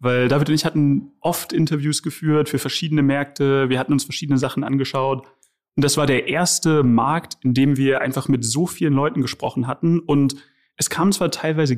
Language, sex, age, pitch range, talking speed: German, male, 30-49, 130-160 Hz, 195 wpm